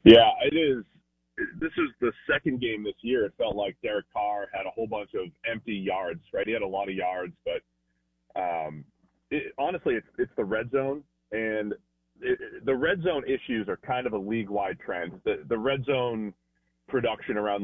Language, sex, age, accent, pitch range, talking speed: English, male, 30-49, American, 100-135 Hz, 190 wpm